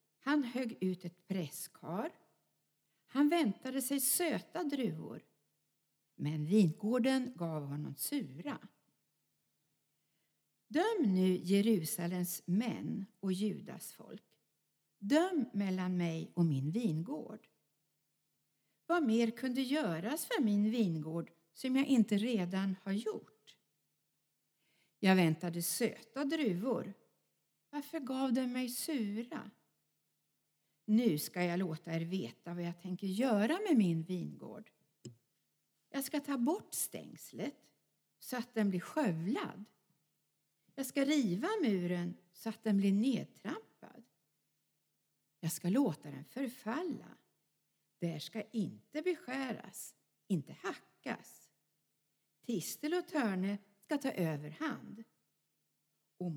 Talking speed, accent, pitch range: 110 wpm, native, 175-260 Hz